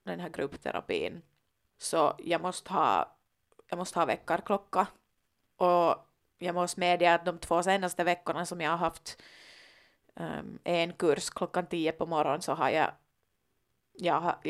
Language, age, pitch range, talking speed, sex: Finnish, 20-39, 165-185 Hz, 145 wpm, female